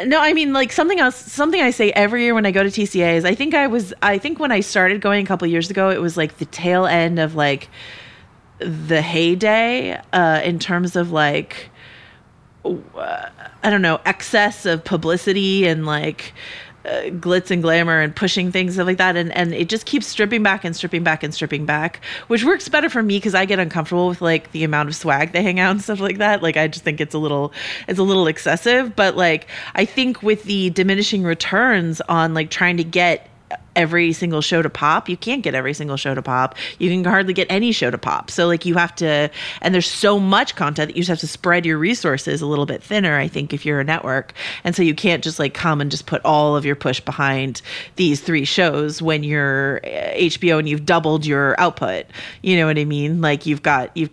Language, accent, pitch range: English, American, 155-195 Hz